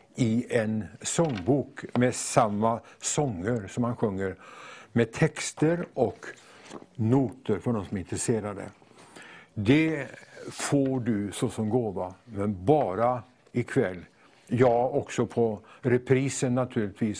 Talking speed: 110 wpm